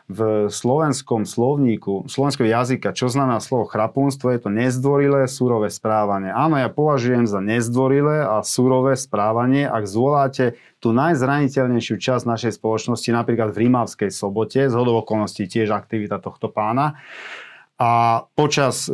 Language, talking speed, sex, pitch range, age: Slovak, 130 wpm, male, 110-135 Hz, 30-49